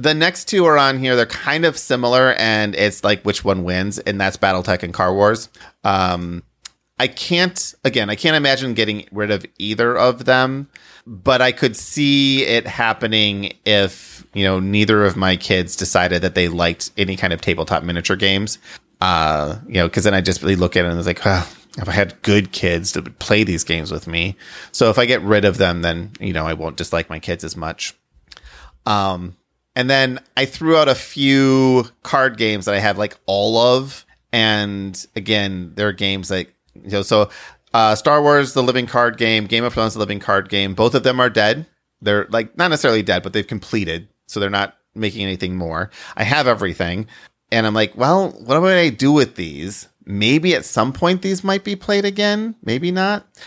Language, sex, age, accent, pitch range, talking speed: English, male, 30-49, American, 95-130 Hz, 210 wpm